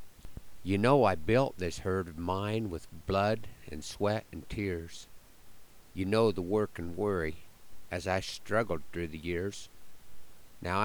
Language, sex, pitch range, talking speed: English, male, 85-105 Hz, 150 wpm